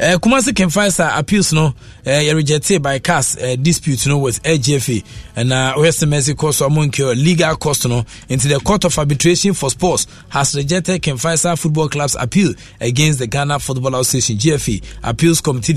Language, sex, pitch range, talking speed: English, male, 125-160 Hz, 185 wpm